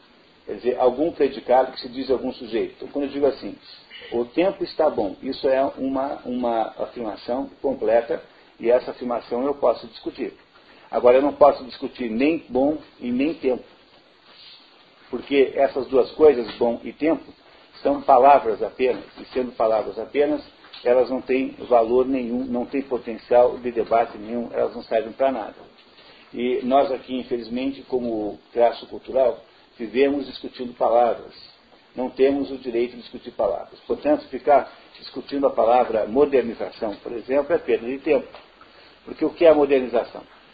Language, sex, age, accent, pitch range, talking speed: Portuguese, male, 50-69, Brazilian, 125-160 Hz, 155 wpm